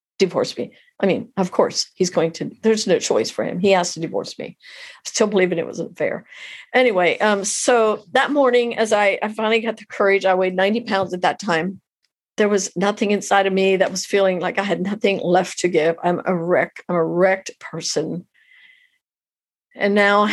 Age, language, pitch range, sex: 50-69, English, 175-200 Hz, female